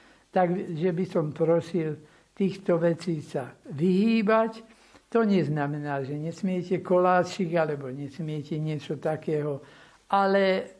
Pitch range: 155-200 Hz